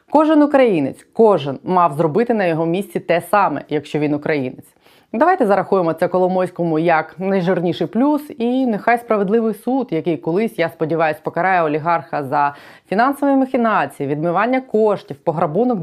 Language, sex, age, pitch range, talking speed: Ukrainian, female, 20-39, 170-235 Hz, 135 wpm